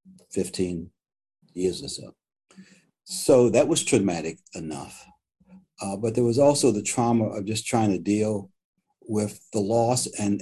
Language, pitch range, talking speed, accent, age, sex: English, 105-155 Hz, 145 wpm, American, 60-79, male